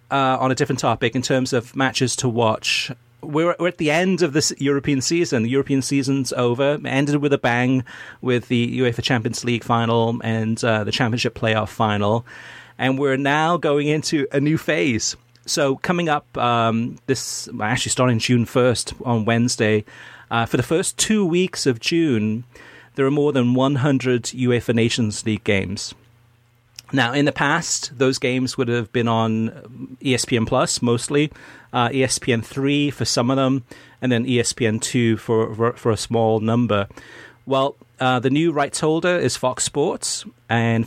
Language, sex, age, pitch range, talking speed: English, male, 40-59, 115-135 Hz, 165 wpm